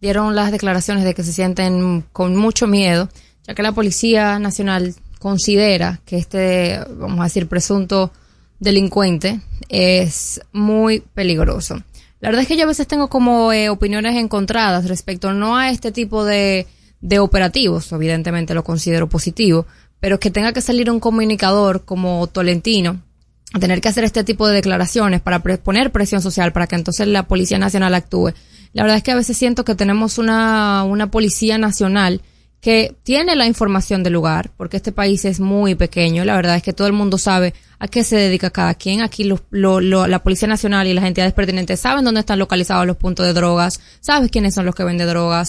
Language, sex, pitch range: Spanish, female, 180-215 Hz